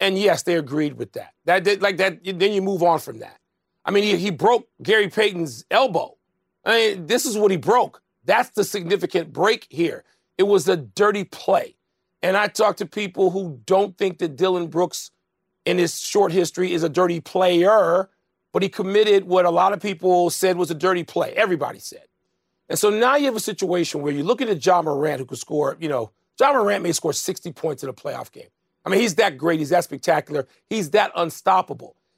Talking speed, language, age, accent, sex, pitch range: 215 wpm, English, 40-59, American, male, 180-240 Hz